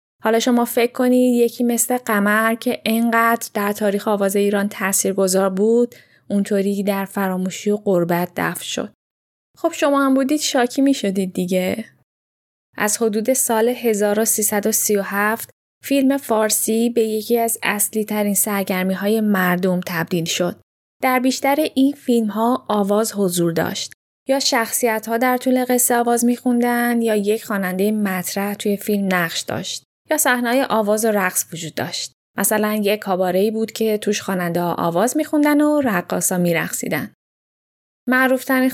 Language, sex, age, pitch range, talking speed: Persian, female, 10-29, 195-240 Hz, 145 wpm